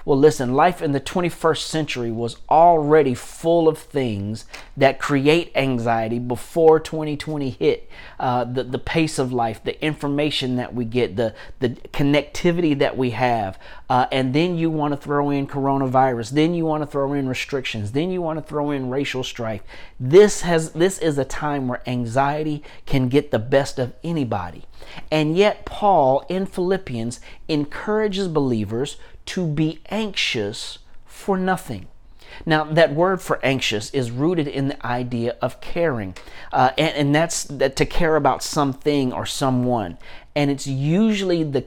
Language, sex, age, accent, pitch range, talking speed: English, male, 40-59, American, 125-160 Hz, 155 wpm